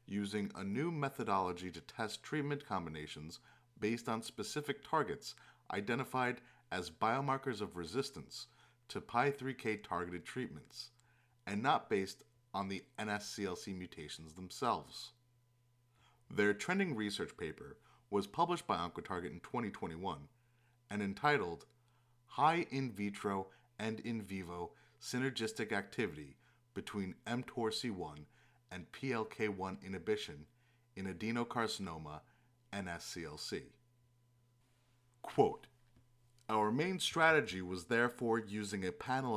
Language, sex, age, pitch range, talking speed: English, male, 30-49, 95-120 Hz, 100 wpm